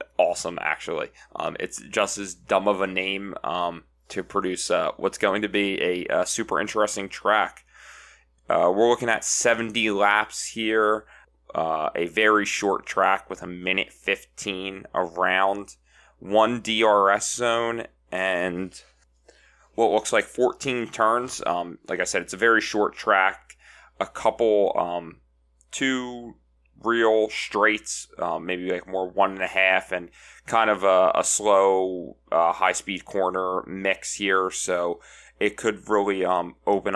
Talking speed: 145 wpm